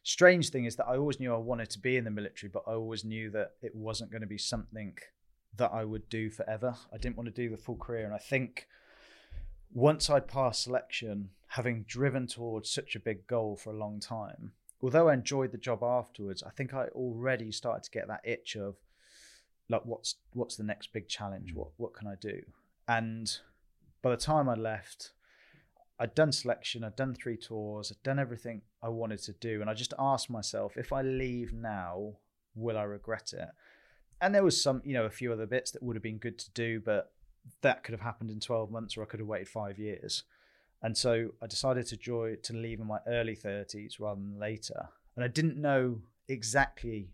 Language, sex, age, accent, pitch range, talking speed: English, male, 20-39, British, 110-125 Hz, 215 wpm